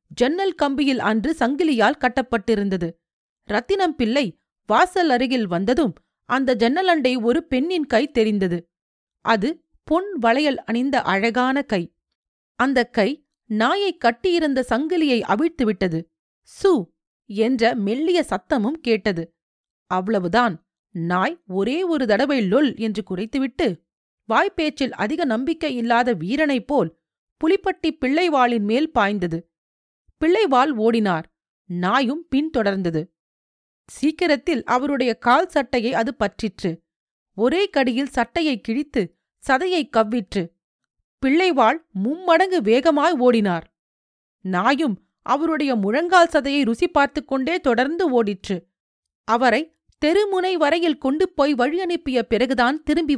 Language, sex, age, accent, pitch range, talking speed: Tamil, female, 40-59, native, 210-305 Hz, 100 wpm